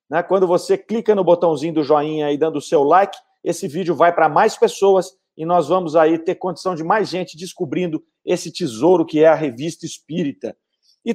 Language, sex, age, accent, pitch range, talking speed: Portuguese, male, 40-59, Brazilian, 170-220 Hz, 195 wpm